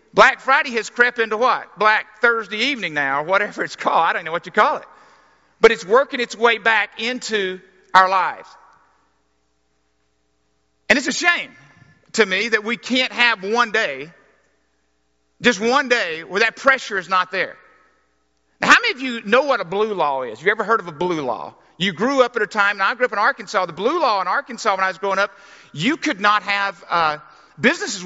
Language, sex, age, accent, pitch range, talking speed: English, male, 50-69, American, 185-235 Hz, 210 wpm